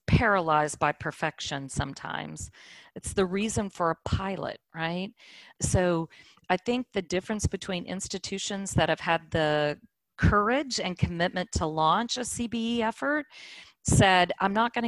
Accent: American